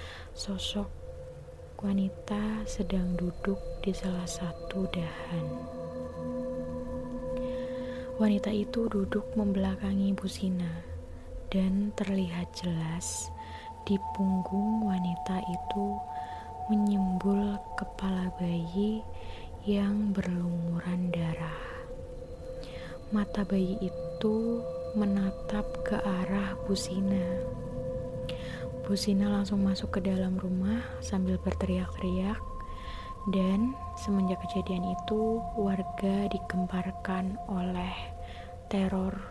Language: Indonesian